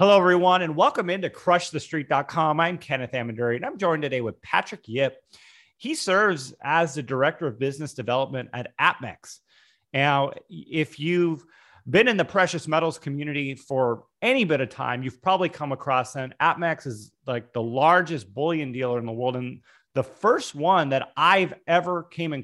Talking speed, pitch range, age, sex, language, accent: 170 wpm, 130-165 Hz, 30-49, male, English, American